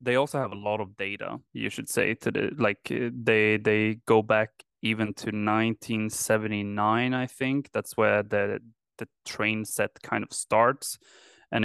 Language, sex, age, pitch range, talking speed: English, male, 20-39, 100-115 Hz, 175 wpm